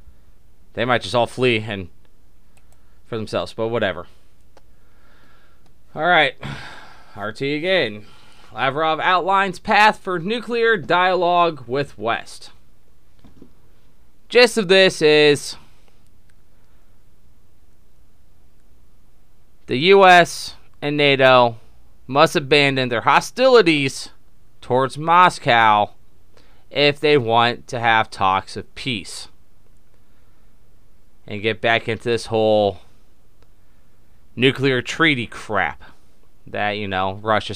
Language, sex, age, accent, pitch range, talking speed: English, male, 20-39, American, 105-145 Hz, 90 wpm